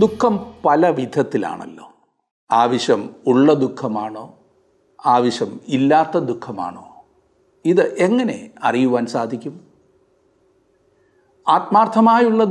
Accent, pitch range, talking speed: native, 135-220 Hz, 65 wpm